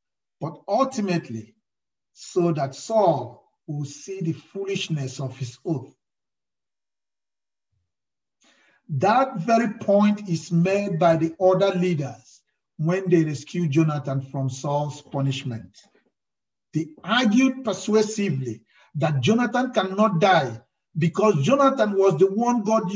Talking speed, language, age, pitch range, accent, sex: 105 wpm, English, 50-69, 135-205 Hz, Nigerian, male